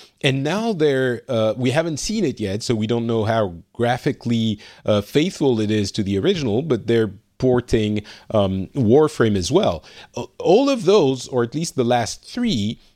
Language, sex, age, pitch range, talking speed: English, male, 40-59, 110-145 Hz, 175 wpm